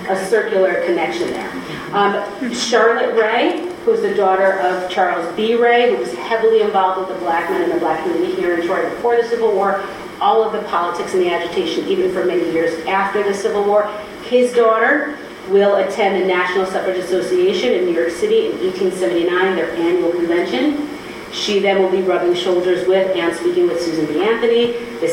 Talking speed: 190 wpm